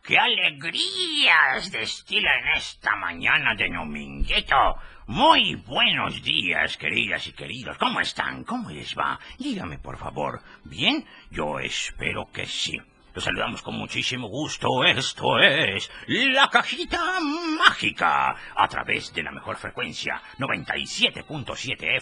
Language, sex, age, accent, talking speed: Spanish, male, 50-69, Spanish, 125 wpm